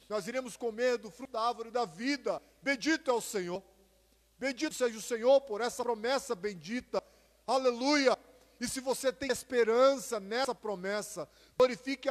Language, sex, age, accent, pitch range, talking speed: Portuguese, male, 40-59, Brazilian, 160-235 Hz, 150 wpm